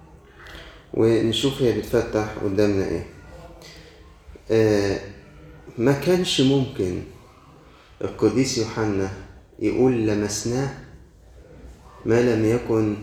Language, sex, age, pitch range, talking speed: Arabic, male, 30-49, 100-125 Hz, 75 wpm